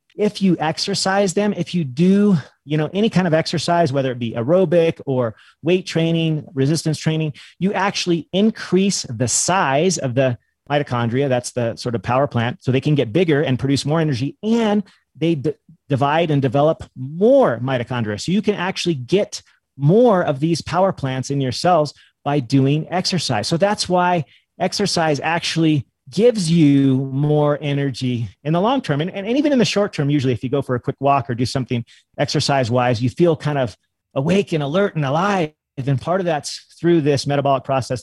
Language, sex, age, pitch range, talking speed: English, male, 30-49, 130-170 Hz, 190 wpm